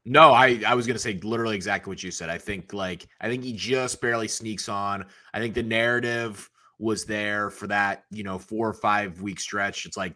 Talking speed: 230 wpm